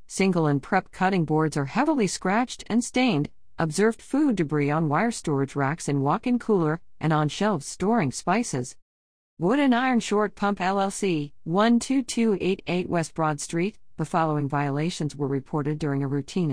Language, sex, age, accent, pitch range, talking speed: English, female, 50-69, American, 150-215 Hz, 155 wpm